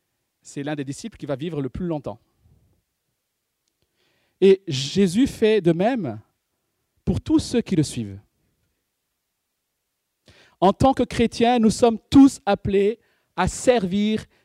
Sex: male